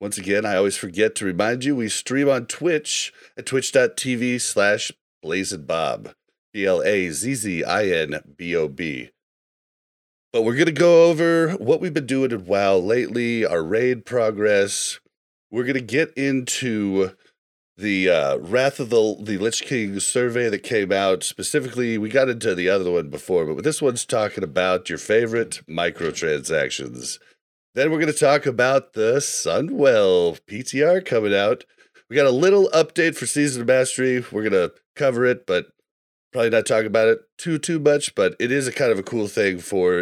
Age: 40-59